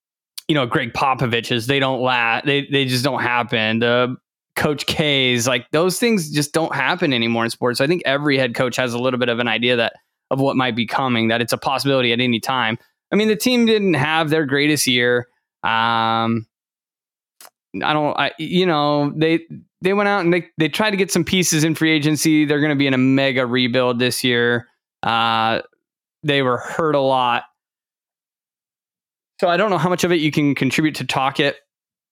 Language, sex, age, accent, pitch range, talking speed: English, male, 20-39, American, 125-160 Hz, 205 wpm